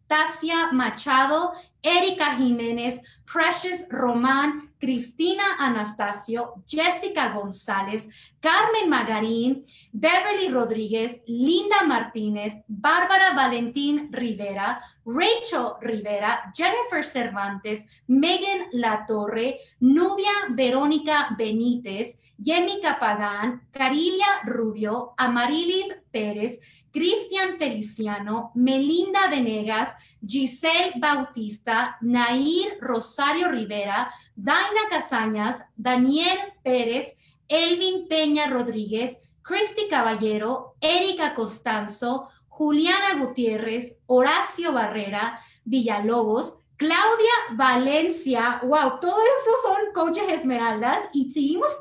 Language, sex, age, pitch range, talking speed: Spanish, female, 30-49, 230-335 Hz, 80 wpm